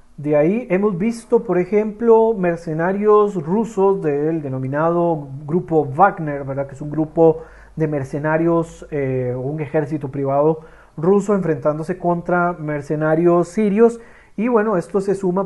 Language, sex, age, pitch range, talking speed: Spanish, male, 40-59, 145-175 Hz, 130 wpm